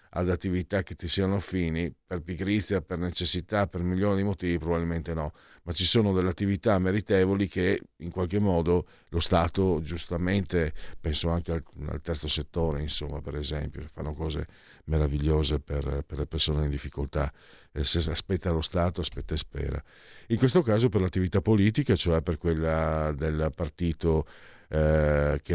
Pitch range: 75-100 Hz